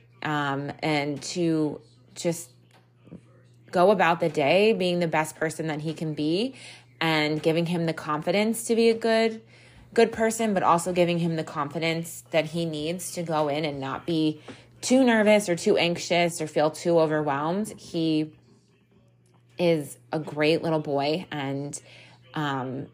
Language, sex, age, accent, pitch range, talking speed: English, female, 20-39, American, 150-180 Hz, 155 wpm